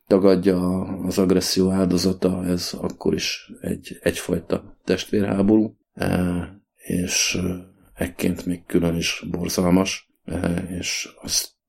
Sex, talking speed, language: male, 85 wpm, Hungarian